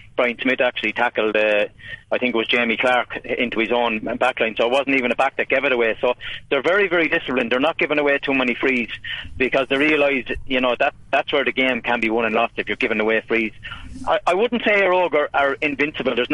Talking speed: 240 wpm